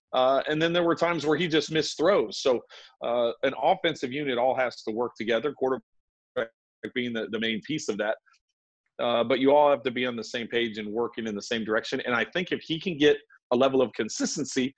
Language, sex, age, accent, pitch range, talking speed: English, male, 40-59, American, 115-145 Hz, 230 wpm